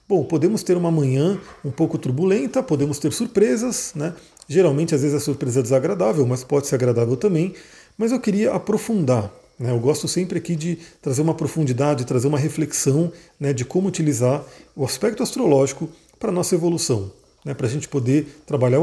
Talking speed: 180 wpm